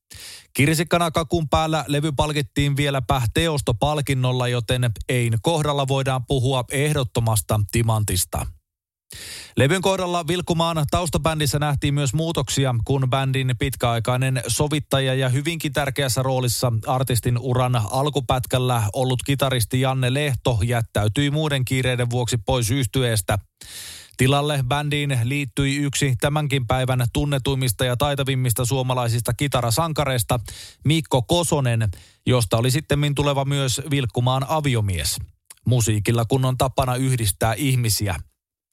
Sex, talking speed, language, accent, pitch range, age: male, 100 wpm, Finnish, native, 120-145 Hz, 20-39